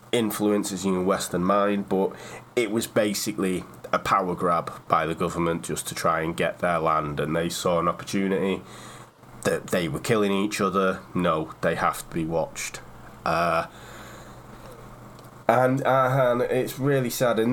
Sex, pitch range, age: male, 95-115 Hz, 20-39